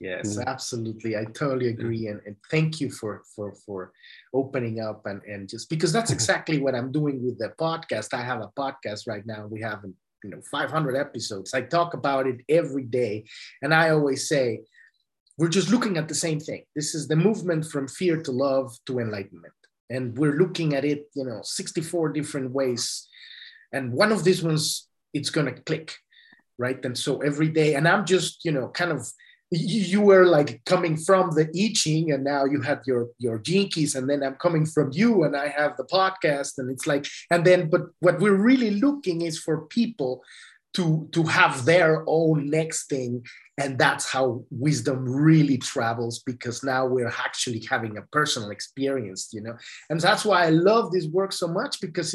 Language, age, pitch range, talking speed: English, 30-49, 130-175 Hz, 190 wpm